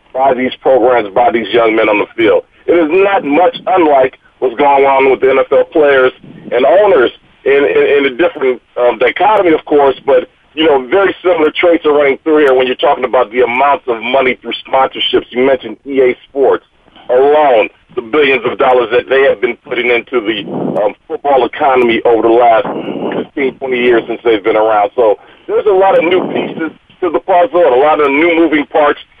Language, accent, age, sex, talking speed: English, American, 40-59, male, 200 wpm